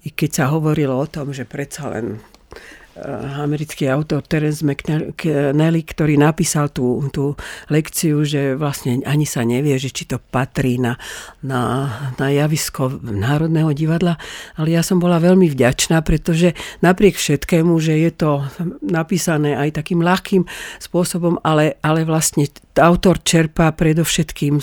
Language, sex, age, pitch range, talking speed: Slovak, female, 50-69, 145-170 Hz, 135 wpm